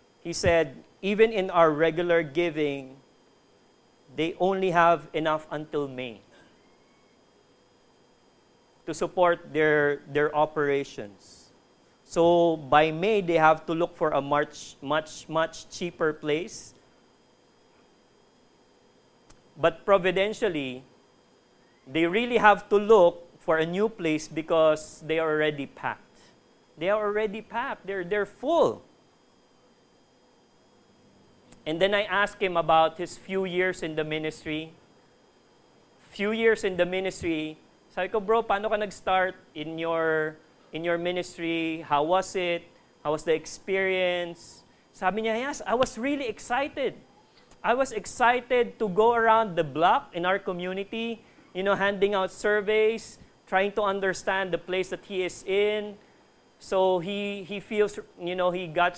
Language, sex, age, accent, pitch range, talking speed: English, male, 40-59, Filipino, 160-200 Hz, 135 wpm